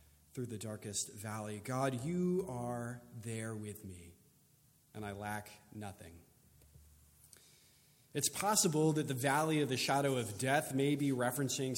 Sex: male